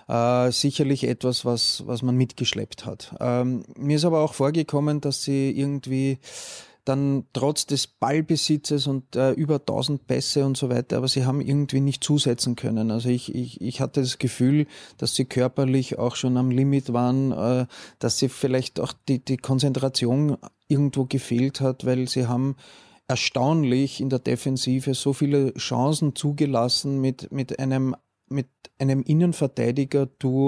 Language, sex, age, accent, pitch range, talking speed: German, male, 30-49, Austrian, 125-145 Hz, 155 wpm